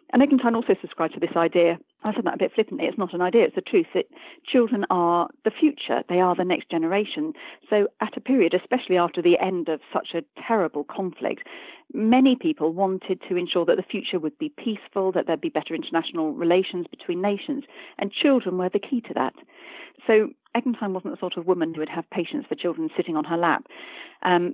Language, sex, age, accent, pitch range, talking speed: English, female, 40-59, British, 175-275 Hz, 215 wpm